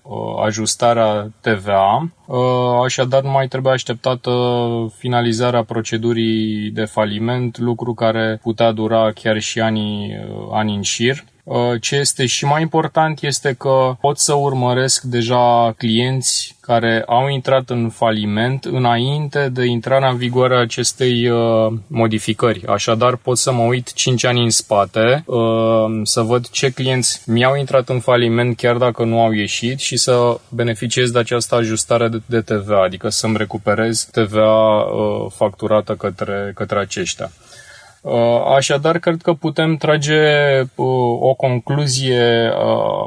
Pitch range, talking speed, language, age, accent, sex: 115-130 Hz, 125 wpm, Romanian, 20-39, native, male